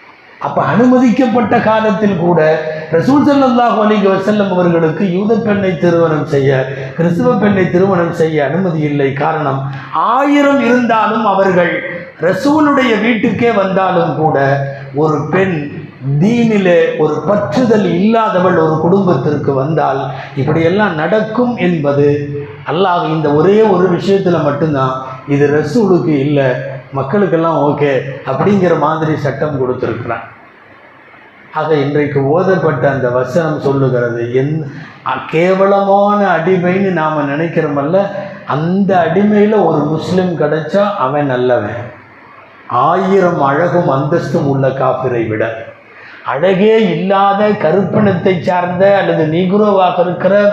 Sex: male